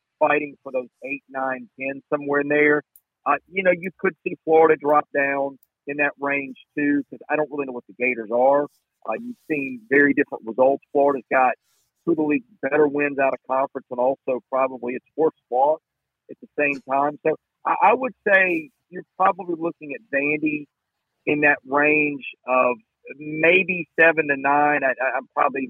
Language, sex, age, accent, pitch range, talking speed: English, male, 50-69, American, 130-155 Hz, 175 wpm